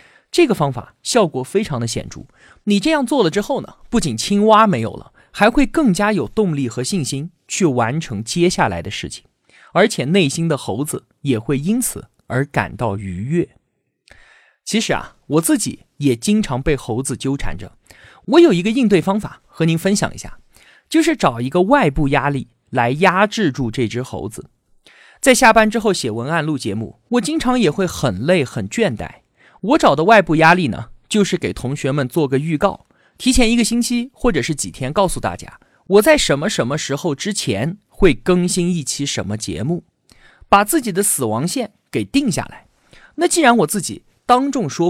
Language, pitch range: Chinese, 130-215 Hz